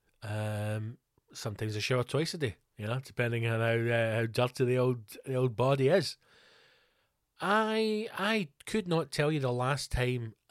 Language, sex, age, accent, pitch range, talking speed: English, male, 30-49, British, 115-180 Hz, 170 wpm